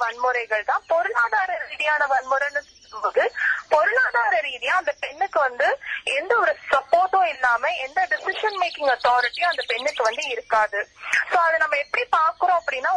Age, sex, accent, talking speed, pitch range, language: 20-39, female, native, 90 wpm, 270-355 Hz, Tamil